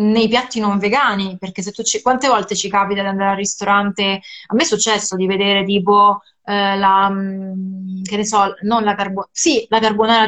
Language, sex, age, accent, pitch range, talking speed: Italian, female, 20-39, native, 200-250 Hz, 200 wpm